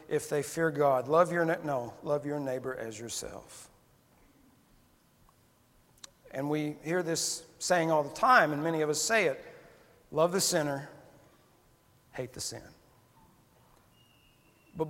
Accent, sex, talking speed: American, male, 135 wpm